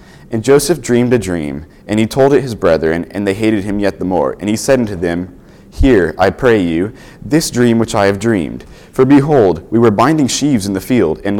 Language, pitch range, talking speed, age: English, 100-130 Hz, 225 wpm, 30-49